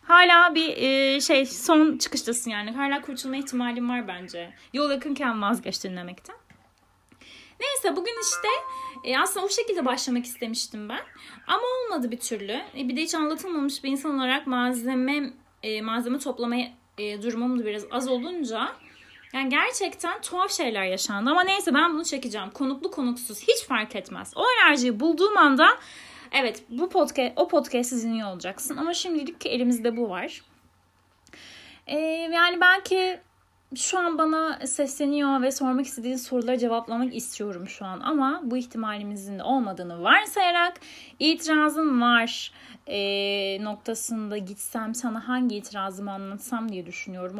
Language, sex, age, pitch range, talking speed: Turkish, female, 20-39, 225-315 Hz, 135 wpm